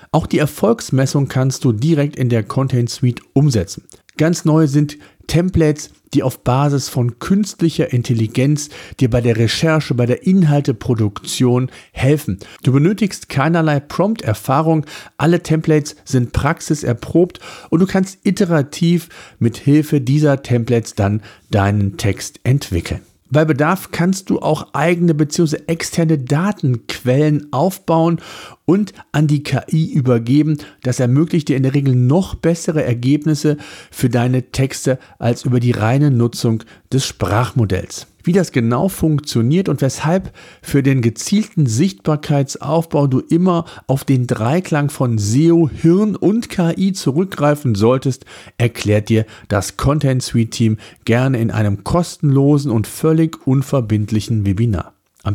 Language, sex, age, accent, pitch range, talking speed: German, male, 50-69, German, 120-160 Hz, 130 wpm